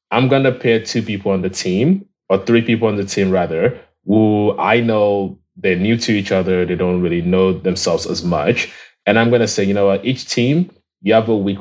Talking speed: 235 wpm